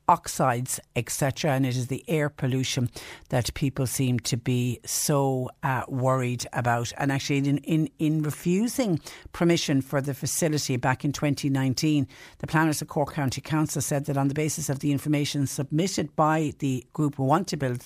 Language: English